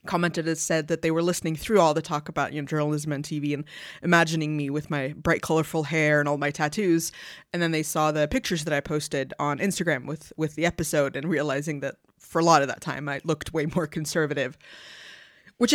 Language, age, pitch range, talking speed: English, 20-39, 150-175 Hz, 225 wpm